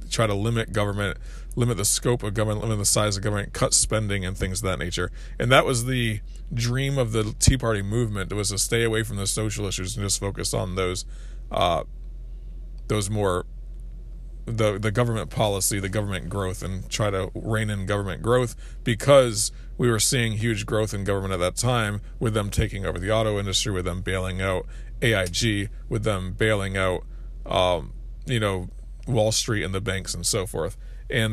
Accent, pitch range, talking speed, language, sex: American, 95-115 Hz, 190 wpm, English, male